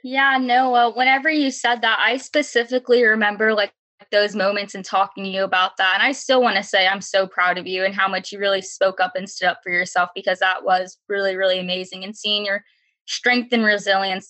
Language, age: English, 20-39